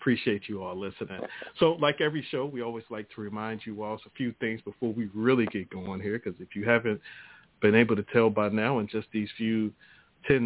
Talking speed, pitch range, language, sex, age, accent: 225 wpm, 105-125 Hz, English, male, 40-59, American